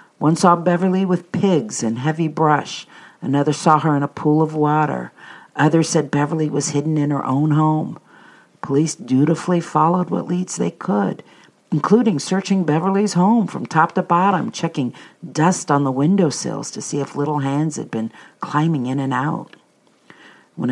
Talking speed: 170 wpm